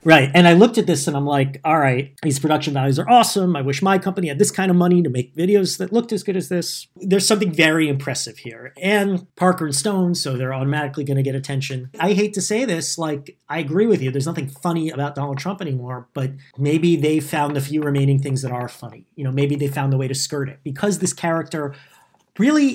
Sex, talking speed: male, 245 wpm